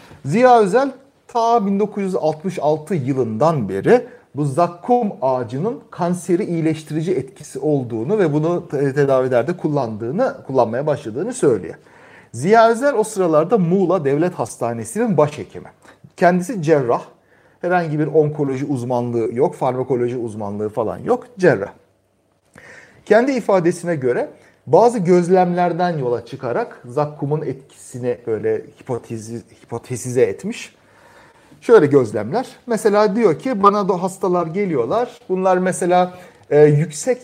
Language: Turkish